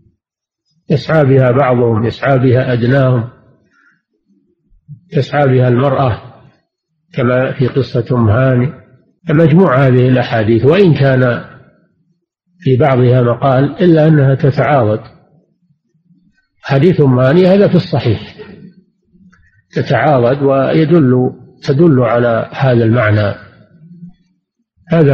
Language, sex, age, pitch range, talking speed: Arabic, male, 50-69, 125-155 Hz, 80 wpm